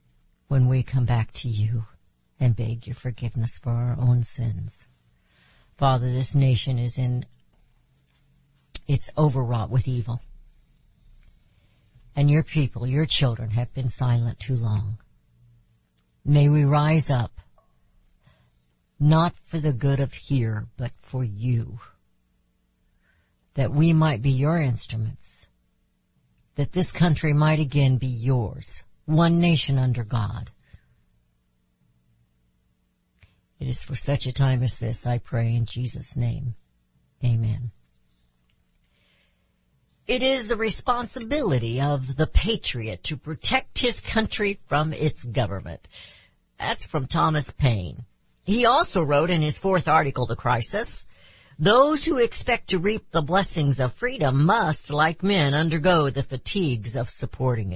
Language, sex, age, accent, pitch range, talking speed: English, female, 60-79, American, 110-150 Hz, 125 wpm